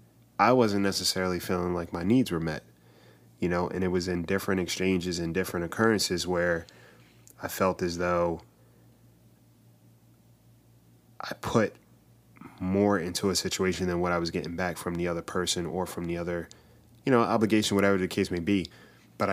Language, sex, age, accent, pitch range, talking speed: English, male, 20-39, American, 90-105 Hz, 170 wpm